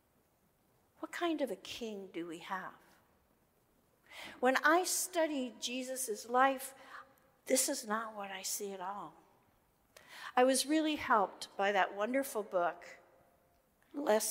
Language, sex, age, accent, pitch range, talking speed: English, female, 50-69, American, 185-275 Hz, 125 wpm